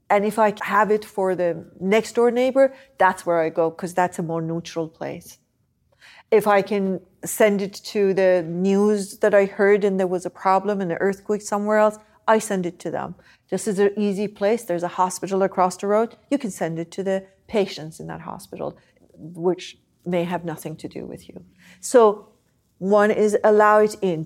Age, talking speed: 40-59, 200 wpm